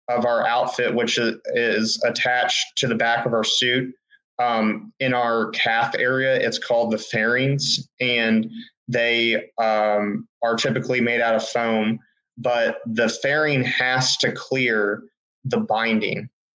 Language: English